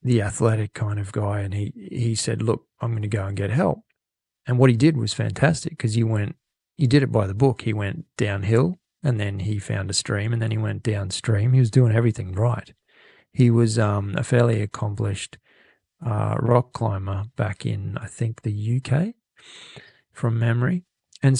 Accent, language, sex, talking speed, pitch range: Australian, English, male, 195 wpm, 105-125 Hz